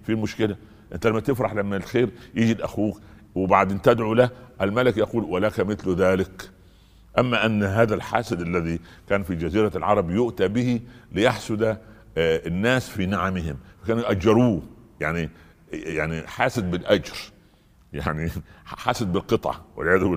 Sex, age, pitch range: male, 60-79, 90-115 Hz